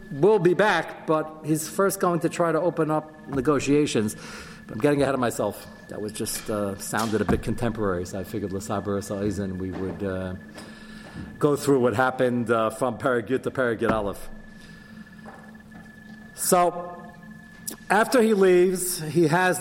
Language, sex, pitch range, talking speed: English, male, 125-180 Hz, 150 wpm